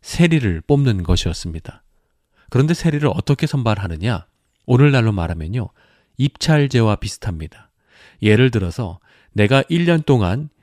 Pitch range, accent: 105-150 Hz, native